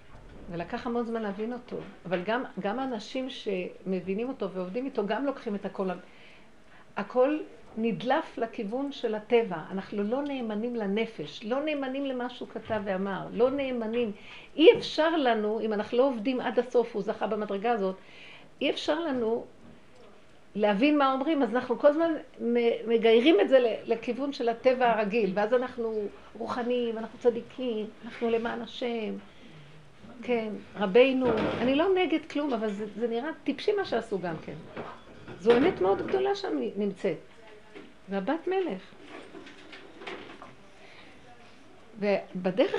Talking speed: 135 wpm